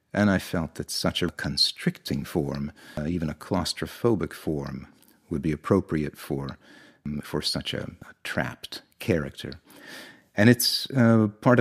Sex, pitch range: male, 80-105 Hz